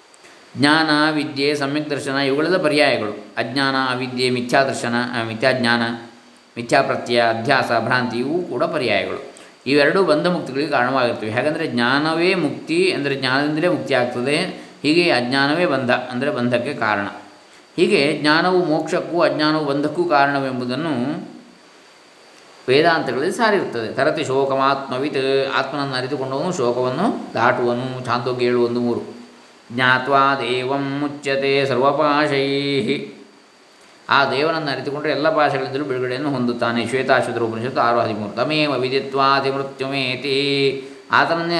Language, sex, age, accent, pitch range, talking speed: Kannada, male, 20-39, native, 120-145 Hz, 100 wpm